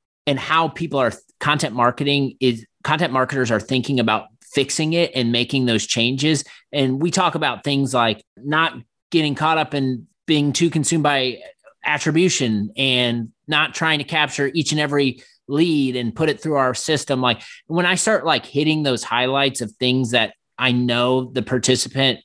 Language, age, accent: English, 30-49, American